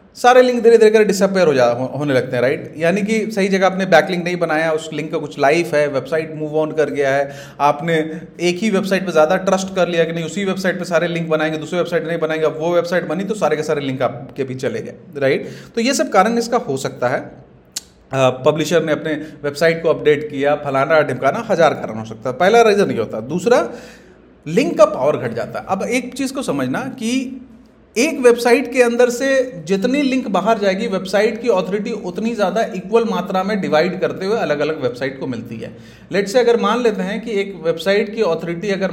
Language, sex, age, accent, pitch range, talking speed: Hindi, male, 30-49, native, 155-230 Hz, 220 wpm